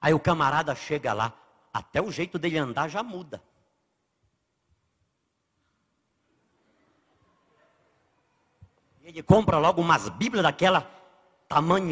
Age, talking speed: 60-79, 95 wpm